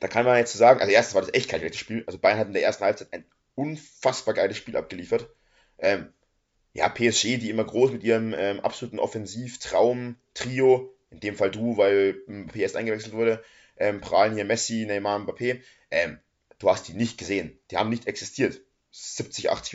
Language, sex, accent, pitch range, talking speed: German, male, German, 110-145 Hz, 190 wpm